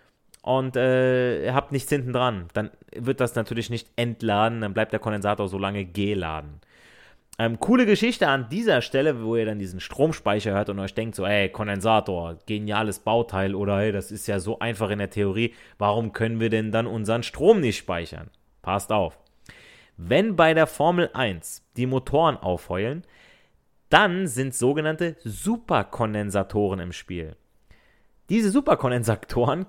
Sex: male